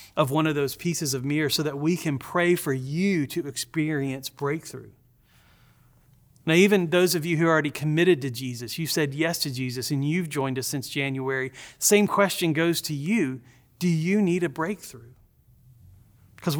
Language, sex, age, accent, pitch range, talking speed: English, male, 30-49, American, 145-180 Hz, 180 wpm